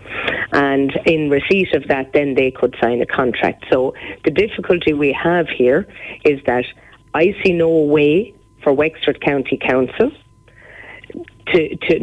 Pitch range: 130-165 Hz